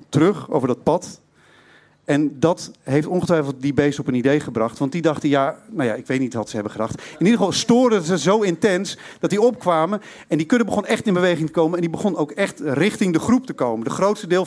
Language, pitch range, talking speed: Dutch, 145-190 Hz, 245 wpm